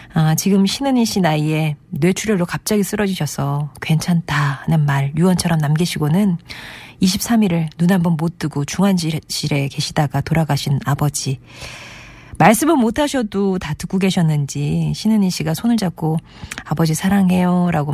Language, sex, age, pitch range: Korean, female, 40-59, 150-200 Hz